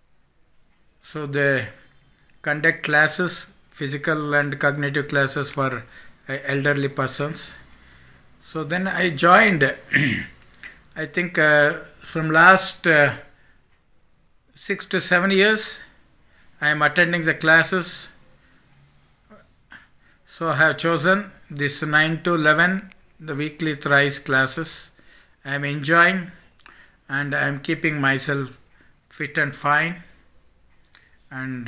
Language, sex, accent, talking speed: English, male, Indian, 100 wpm